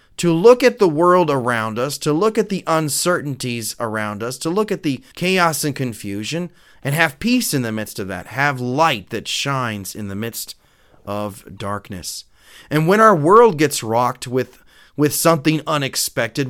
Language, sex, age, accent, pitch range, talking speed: English, male, 30-49, American, 115-170 Hz, 175 wpm